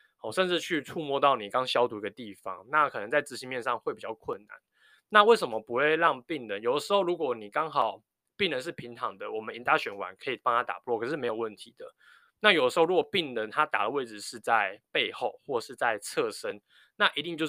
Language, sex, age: Chinese, male, 20-39